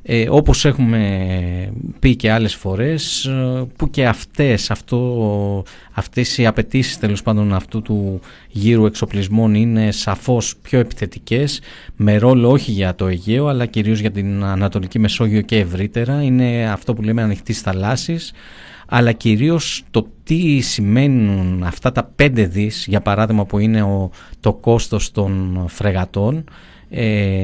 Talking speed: 140 wpm